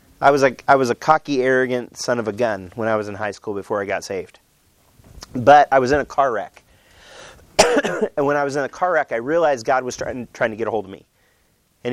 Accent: American